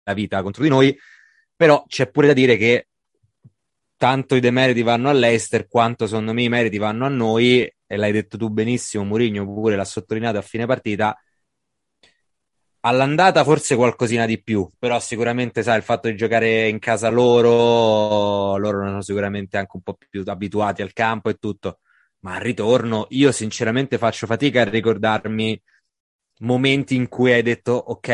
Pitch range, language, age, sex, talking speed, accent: 105-125 Hz, Italian, 20-39, male, 165 wpm, native